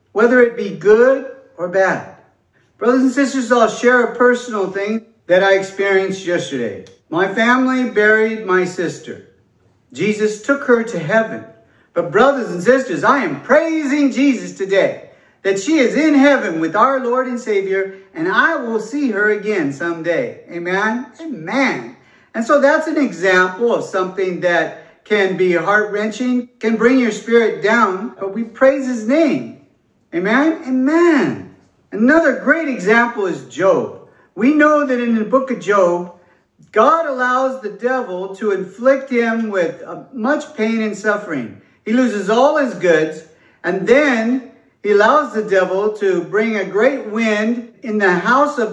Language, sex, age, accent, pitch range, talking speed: English, male, 50-69, American, 195-265 Hz, 155 wpm